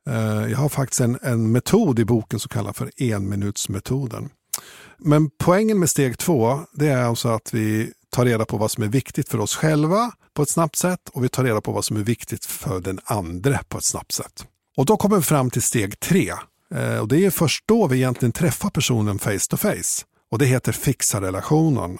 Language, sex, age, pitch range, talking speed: English, male, 50-69, 110-145 Hz, 210 wpm